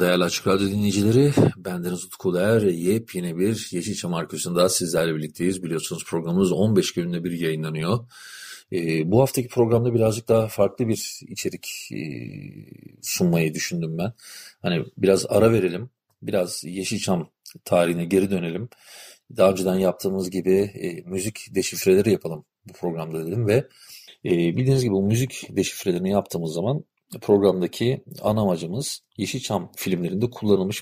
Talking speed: 130 wpm